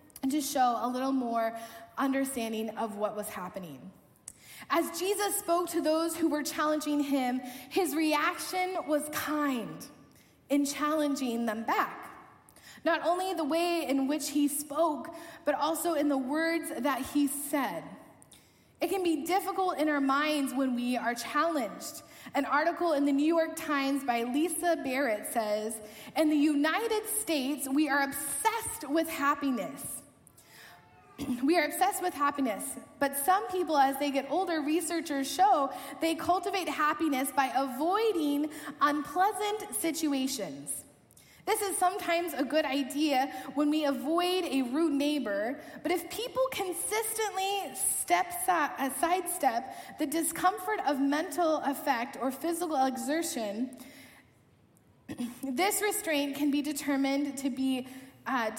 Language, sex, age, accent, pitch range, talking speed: English, female, 10-29, American, 270-335 Hz, 135 wpm